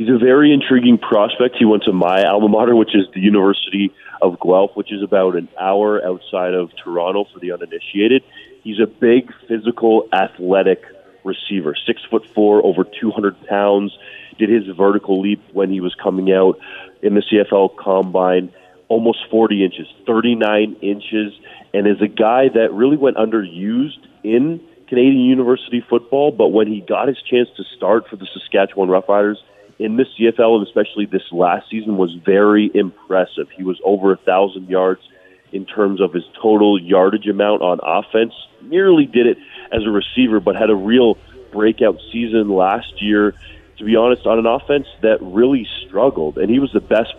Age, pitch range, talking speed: 30-49, 95-115 Hz, 175 wpm